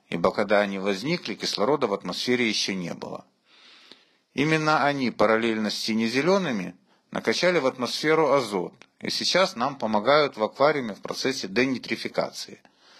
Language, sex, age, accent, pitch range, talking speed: Russian, male, 50-69, native, 105-140 Hz, 130 wpm